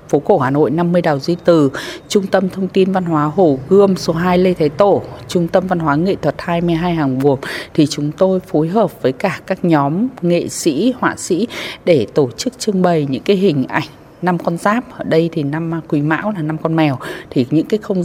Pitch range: 145-185 Hz